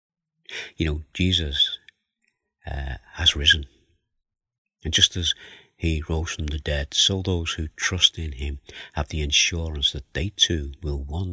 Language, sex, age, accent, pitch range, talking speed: English, male, 50-69, British, 70-90 Hz, 150 wpm